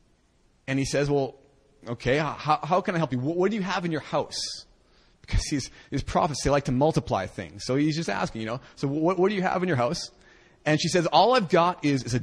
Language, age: English, 30-49